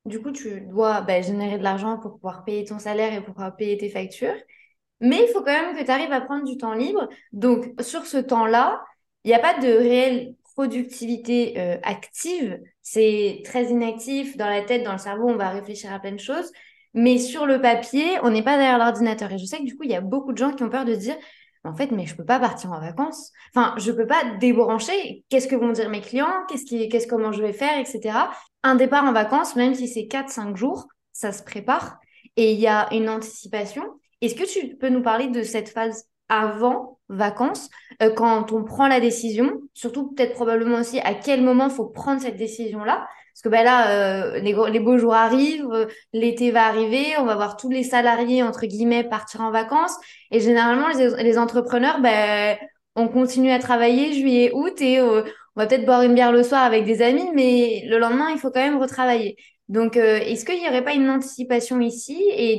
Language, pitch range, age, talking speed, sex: French, 220-265 Hz, 20-39, 220 wpm, female